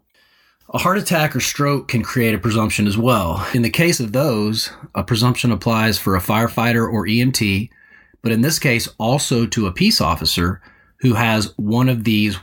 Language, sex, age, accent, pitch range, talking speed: English, male, 30-49, American, 100-125 Hz, 185 wpm